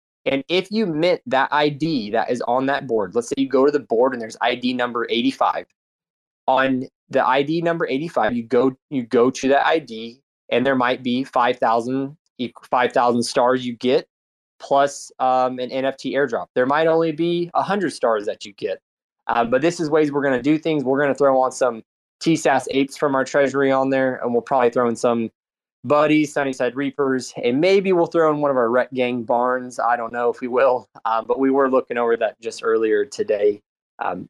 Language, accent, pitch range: English, American, 120-150 Hz